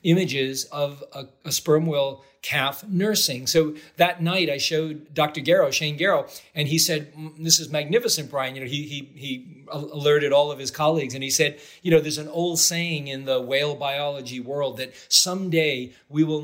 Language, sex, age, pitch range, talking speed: English, male, 40-59, 145-175 Hz, 190 wpm